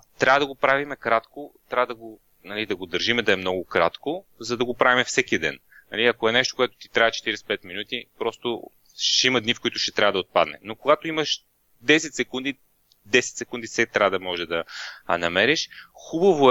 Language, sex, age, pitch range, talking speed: Bulgarian, male, 30-49, 105-125 Hz, 205 wpm